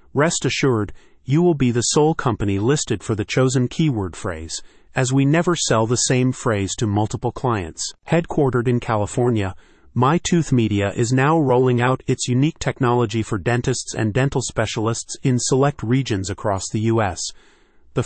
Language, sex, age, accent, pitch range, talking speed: English, male, 30-49, American, 110-135 Hz, 160 wpm